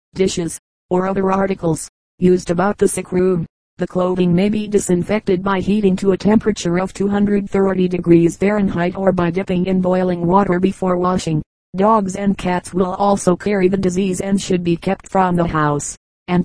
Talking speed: 170 wpm